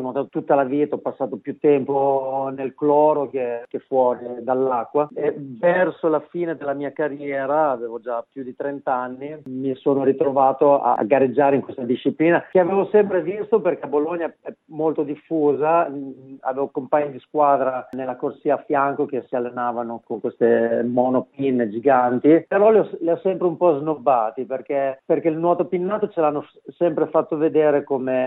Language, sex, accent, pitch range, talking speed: Italian, male, native, 130-155 Hz, 170 wpm